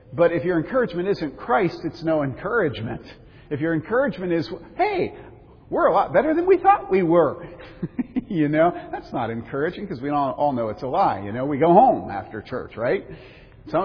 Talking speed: 190 wpm